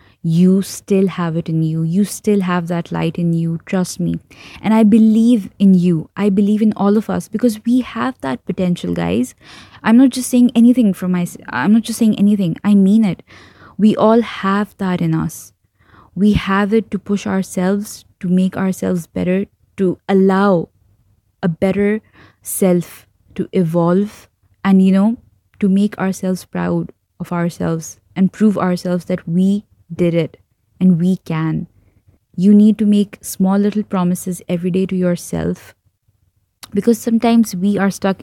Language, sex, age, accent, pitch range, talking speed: English, female, 20-39, Indian, 165-200 Hz, 165 wpm